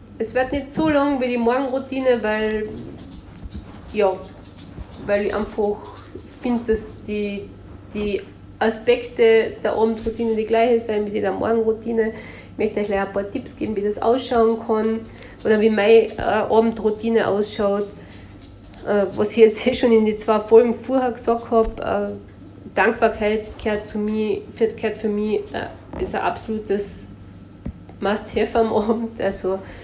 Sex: female